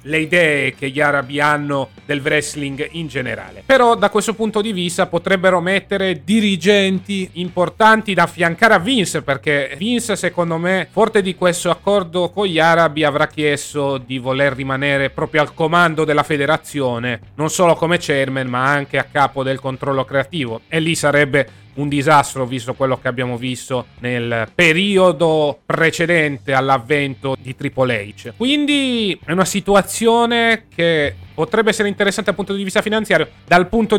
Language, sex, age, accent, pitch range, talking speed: Italian, male, 30-49, native, 135-185 Hz, 155 wpm